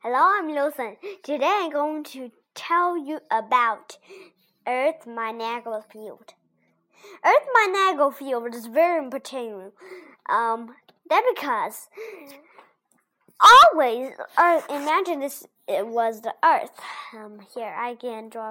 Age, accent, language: 10-29, American, Chinese